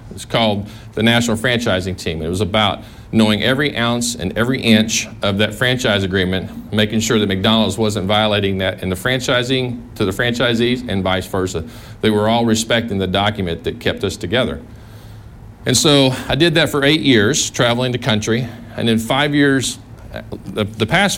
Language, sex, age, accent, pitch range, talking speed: English, male, 40-59, American, 105-120 Hz, 180 wpm